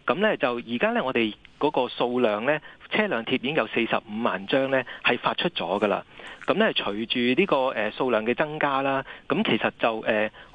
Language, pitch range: Chinese, 115-155 Hz